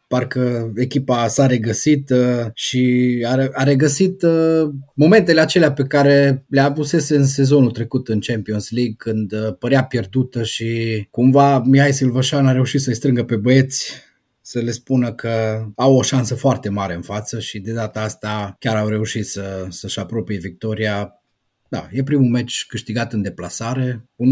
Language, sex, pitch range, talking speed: Romanian, male, 110-140 Hz, 150 wpm